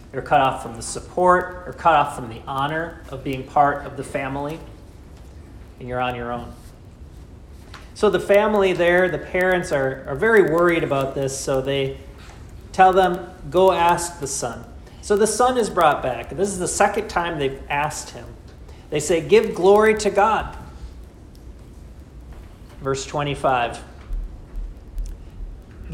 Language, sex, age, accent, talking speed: English, male, 40-59, American, 155 wpm